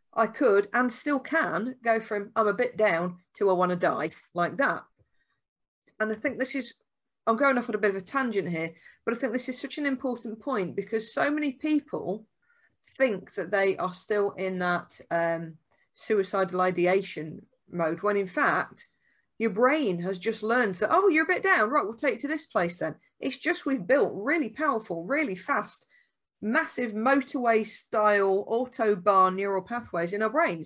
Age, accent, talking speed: 40-59, British, 190 wpm